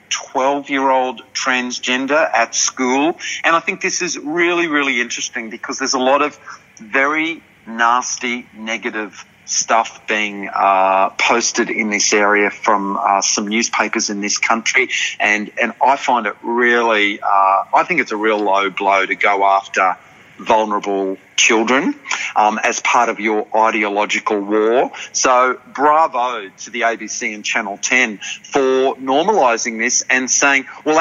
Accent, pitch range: Australian, 105-135 Hz